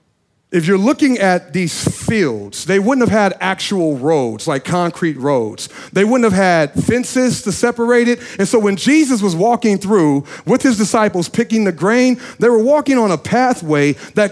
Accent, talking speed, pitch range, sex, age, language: American, 180 wpm, 175-235 Hz, male, 40-59, English